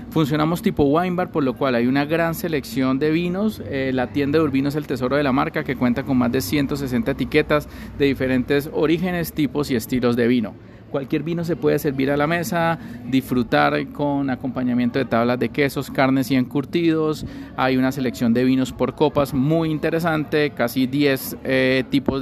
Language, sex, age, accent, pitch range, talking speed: Spanish, male, 30-49, Colombian, 125-155 Hz, 190 wpm